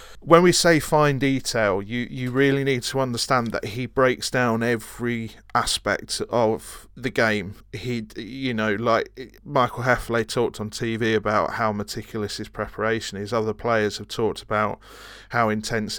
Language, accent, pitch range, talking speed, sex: English, British, 110-125 Hz, 160 wpm, male